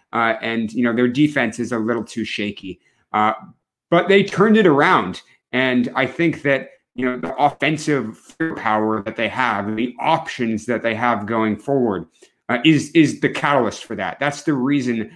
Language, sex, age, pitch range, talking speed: English, male, 30-49, 110-145 Hz, 180 wpm